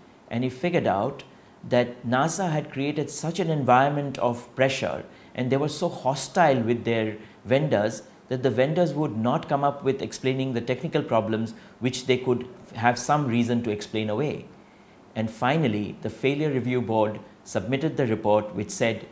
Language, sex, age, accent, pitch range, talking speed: English, male, 50-69, Indian, 115-150 Hz, 165 wpm